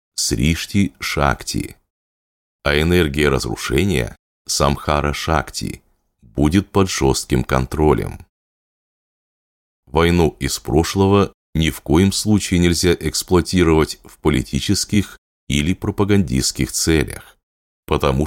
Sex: male